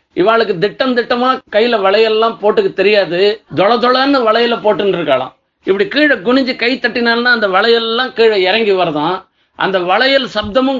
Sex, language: male, Tamil